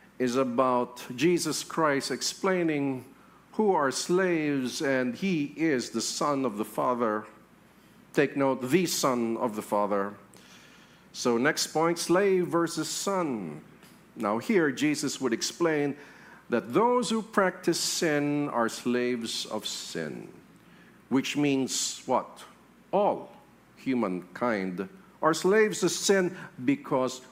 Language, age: English, 50-69